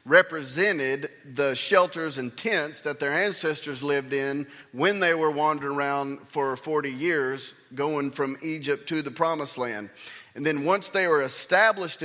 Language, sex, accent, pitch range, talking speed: English, male, American, 130-165 Hz, 155 wpm